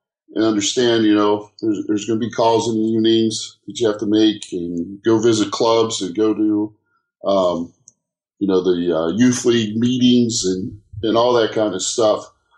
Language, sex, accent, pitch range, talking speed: English, male, American, 105-135 Hz, 190 wpm